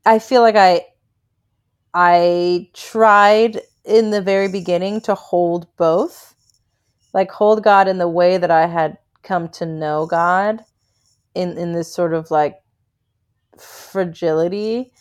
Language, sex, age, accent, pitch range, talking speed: English, female, 30-49, American, 155-190 Hz, 130 wpm